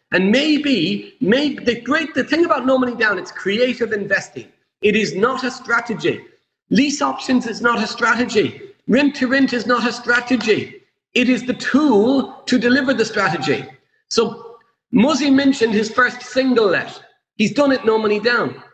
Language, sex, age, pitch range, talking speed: English, male, 40-59, 210-270 Hz, 170 wpm